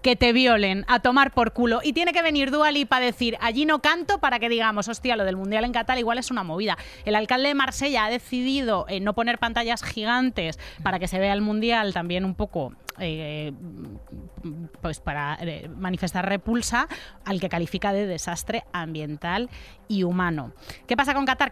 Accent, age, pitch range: Spanish, 30-49, 185-235 Hz